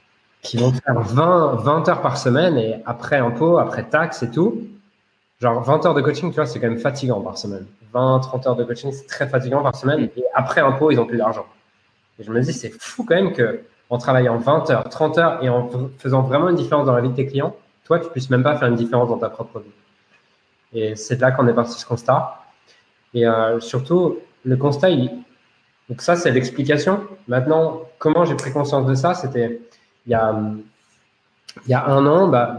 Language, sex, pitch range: French, male, 120-150 Hz